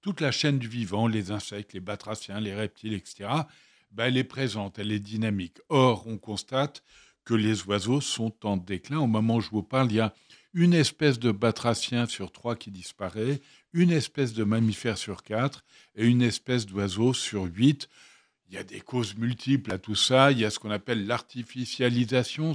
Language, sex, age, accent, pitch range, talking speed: French, male, 60-79, French, 105-130 Hz, 195 wpm